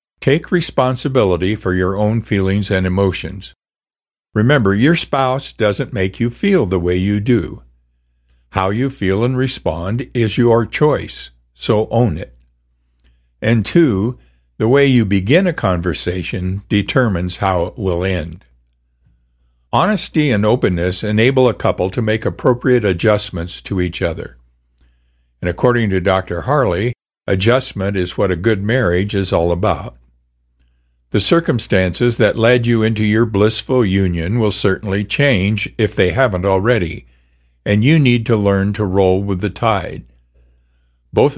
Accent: American